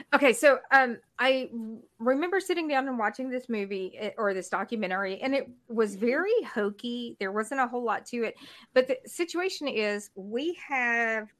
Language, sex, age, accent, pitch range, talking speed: English, female, 40-59, American, 180-235 Hz, 170 wpm